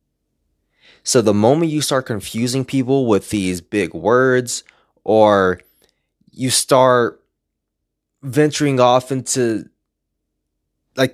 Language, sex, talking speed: English, male, 95 wpm